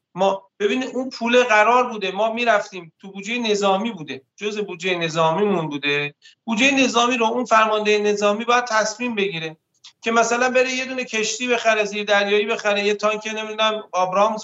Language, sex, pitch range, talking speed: Persian, male, 160-215 Hz, 160 wpm